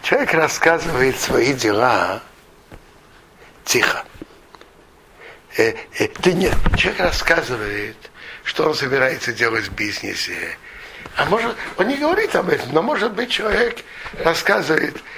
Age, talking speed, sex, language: 60-79, 115 wpm, male, Russian